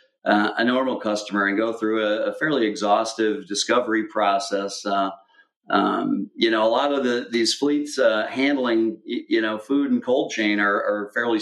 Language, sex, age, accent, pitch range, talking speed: English, male, 40-59, American, 105-135 Hz, 180 wpm